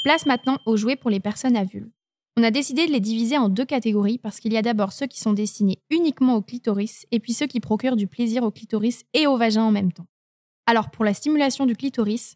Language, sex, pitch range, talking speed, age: French, female, 215-255 Hz, 250 wpm, 20-39